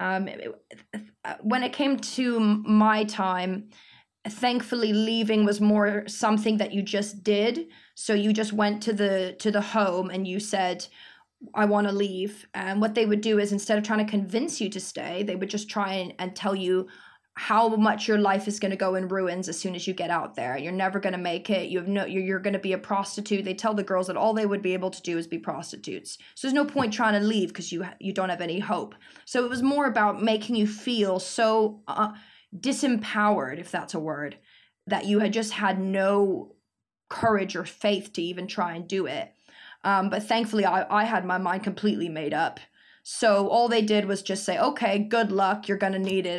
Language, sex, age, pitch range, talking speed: English, female, 20-39, 185-215 Hz, 220 wpm